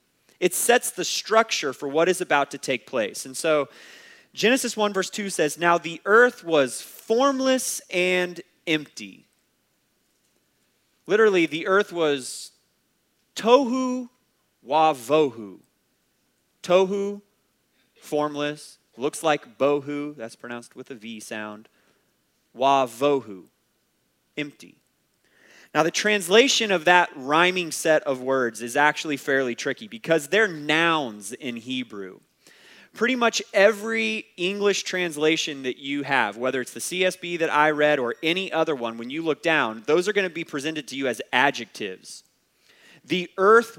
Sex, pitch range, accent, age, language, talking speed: male, 135-200 Hz, American, 30-49, English, 135 wpm